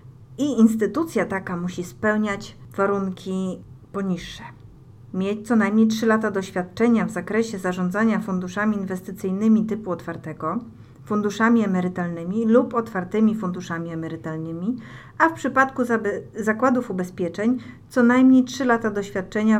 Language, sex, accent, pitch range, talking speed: Polish, female, native, 175-225 Hz, 110 wpm